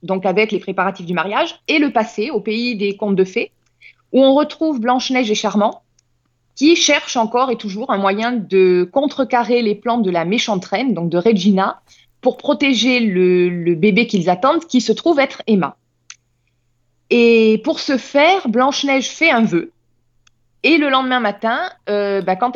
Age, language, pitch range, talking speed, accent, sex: 20-39, French, 190-270 Hz, 175 wpm, French, female